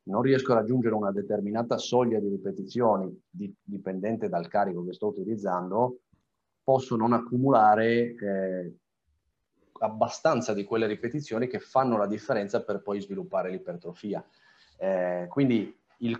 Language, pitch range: Italian, 100-120 Hz